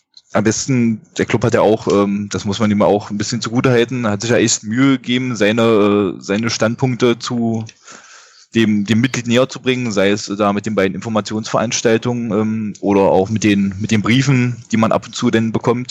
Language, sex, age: German, male, 10-29